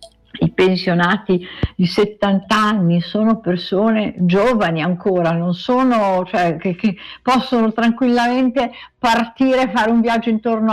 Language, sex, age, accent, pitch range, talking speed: Italian, female, 50-69, native, 205-245 Hz, 120 wpm